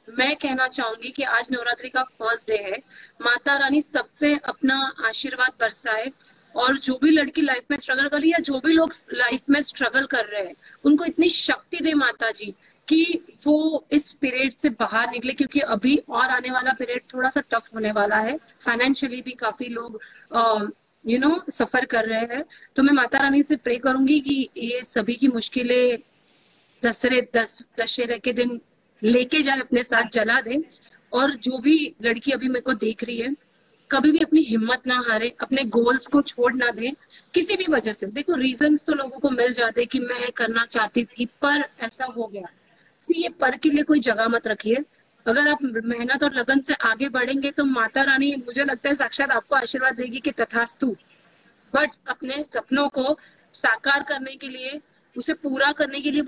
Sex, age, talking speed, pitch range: female, 30-49, 185 wpm, 235-285 Hz